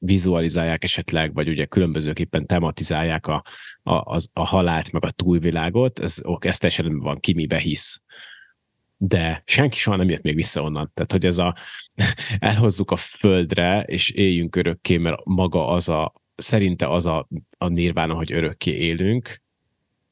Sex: male